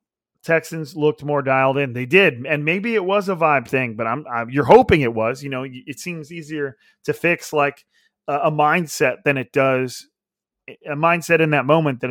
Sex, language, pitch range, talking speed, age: male, English, 125-160 Hz, 200 wpm, 30-49